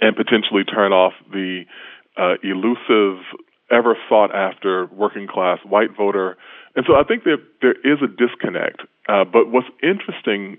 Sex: female